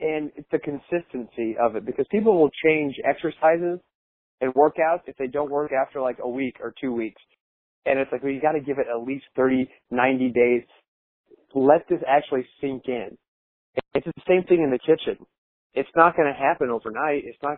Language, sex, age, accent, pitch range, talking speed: English, male, 30-49, American, 120-155 Hz, 200 wpm